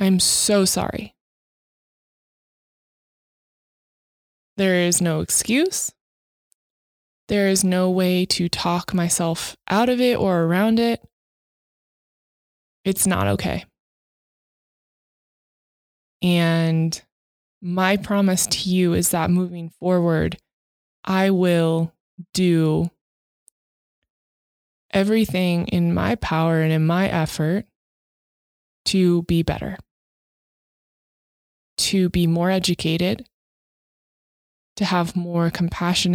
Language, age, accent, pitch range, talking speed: English, 20-39, American, 165-190 Hz, 90 wpm